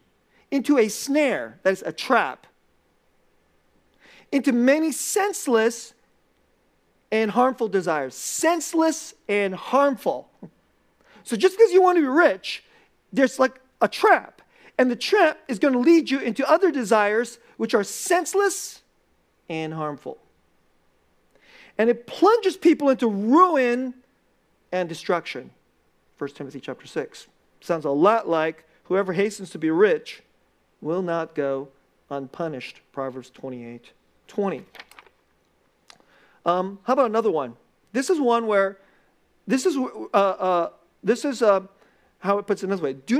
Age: 40-59